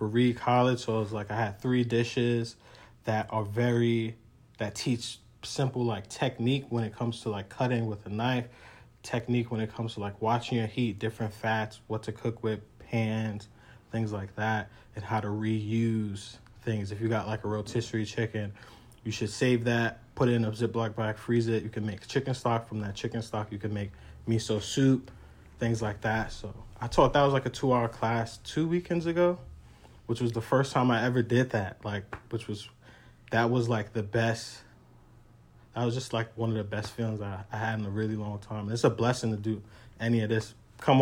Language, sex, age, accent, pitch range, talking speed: English, male, 20-39, American, 110-120 Hz, 210 wpm